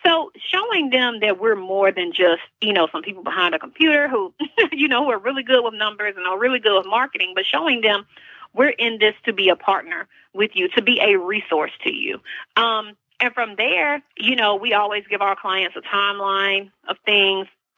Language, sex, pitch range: English, female, 190-235 Hz